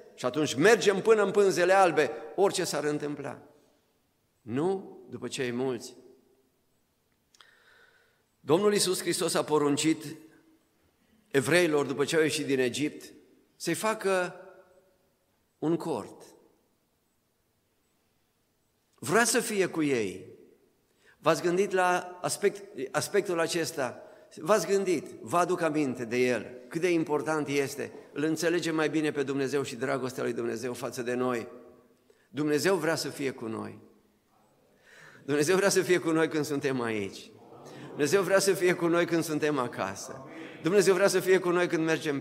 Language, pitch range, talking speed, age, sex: Romanian, 145-185 Hz, 140 wpm, 50-69, male